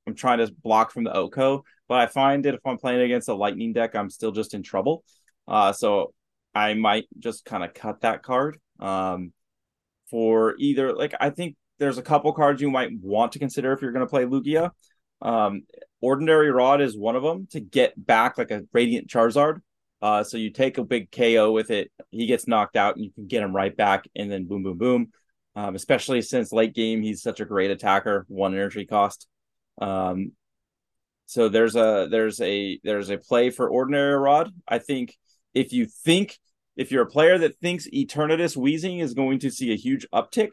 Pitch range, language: 105-145 Hz, English